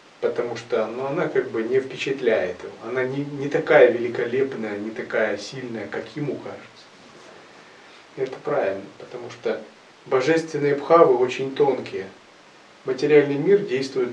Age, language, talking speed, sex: 30-49, Russian, 135 wpm, male